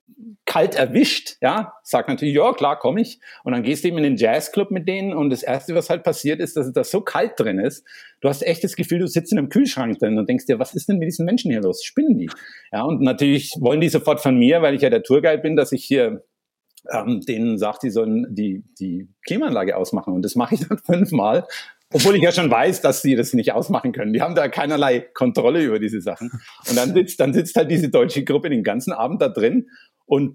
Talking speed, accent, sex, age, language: 245 wpm, German, male, 50-69, German